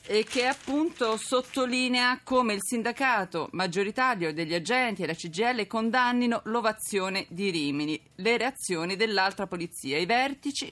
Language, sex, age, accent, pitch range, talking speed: Italian, female, 40-59, native, 175-230 Hz, 130 wpm